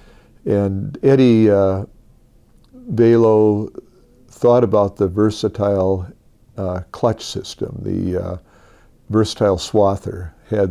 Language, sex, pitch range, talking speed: English, male, 95-115 Hz, 90 wpm